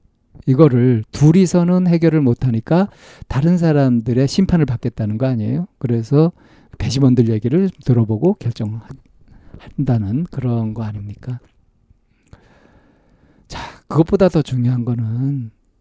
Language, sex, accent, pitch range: Korean, male, native, 115-155 Hz